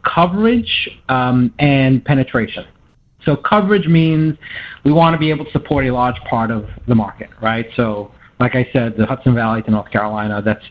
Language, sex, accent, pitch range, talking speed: English, male, American, 115-160 Hz, 175 wpm